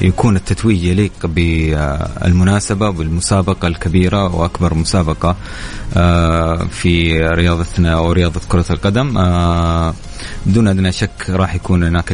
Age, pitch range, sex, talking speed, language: 30-49, 85-100 Hz, male, 100 wpm, Arabic